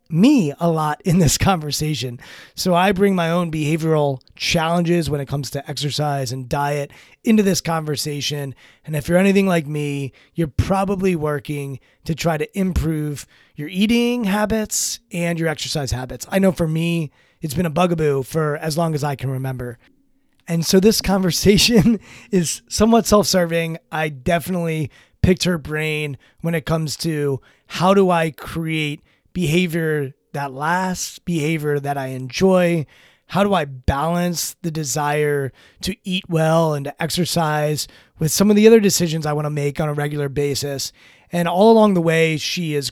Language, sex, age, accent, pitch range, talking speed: English, male, 20-39, American, 145-180 Hz, 165 wpm